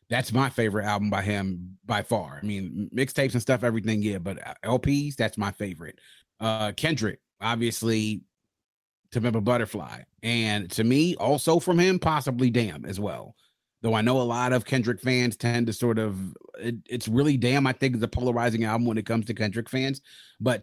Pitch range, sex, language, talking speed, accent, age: 105-130 Hz, male, English, 190 wpm, American, 30-49